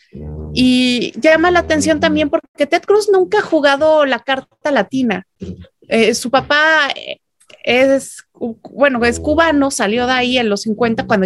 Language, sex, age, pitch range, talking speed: Spanish, female, 30-49, 230-290 Hz, 150 wpm